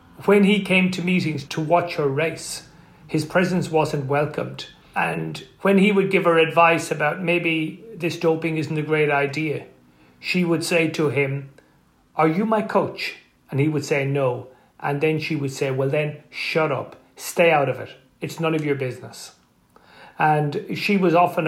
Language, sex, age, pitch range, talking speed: English, male, 40-59, 140-170 Hz, 180 wpm